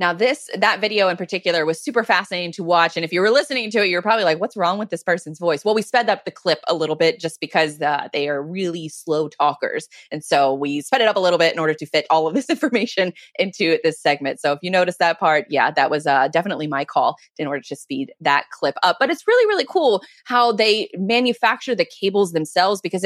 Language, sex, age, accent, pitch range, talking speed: English, female, 20-39, American, 165-220 Hz, 250 wpm